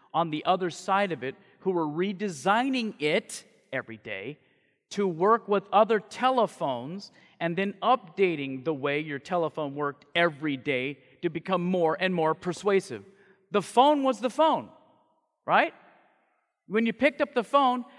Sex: male